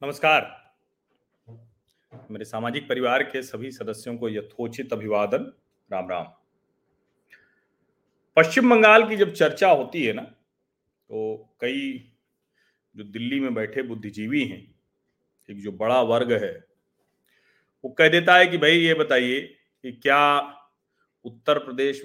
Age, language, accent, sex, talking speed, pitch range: 40-59, Hindi, native, male, 120 wpm, 130-205 Hz